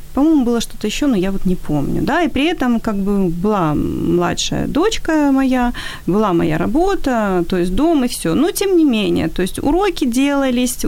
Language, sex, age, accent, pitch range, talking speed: Ukrainian, female, 30-49, native, 195-280 Hz, 195 wpm